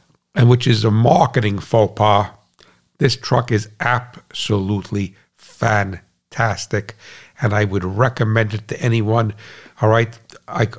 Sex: male